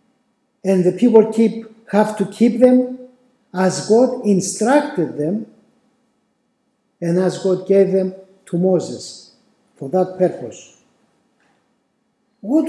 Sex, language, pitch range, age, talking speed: male, English, 190-250 Hz, 50-69, 105 wpm